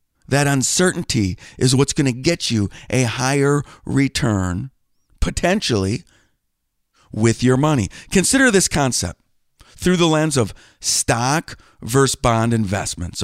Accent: American